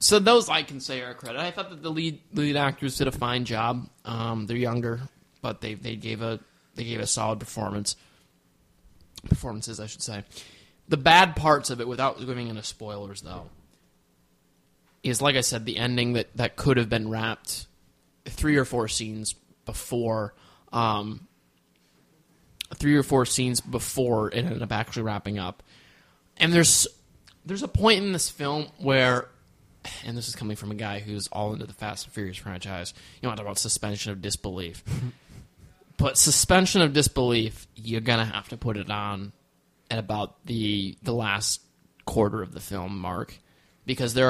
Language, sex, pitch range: English, male, 105-130 Hz